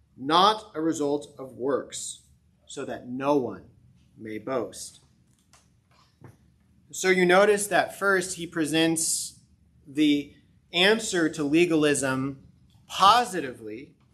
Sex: male